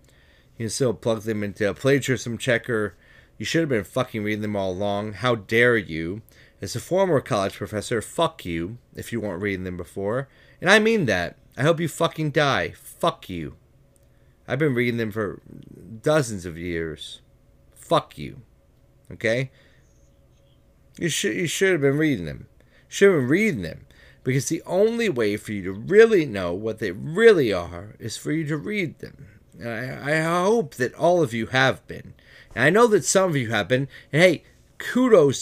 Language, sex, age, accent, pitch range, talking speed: English, male, 30-49, American, 105-160 Hz, 185 wpm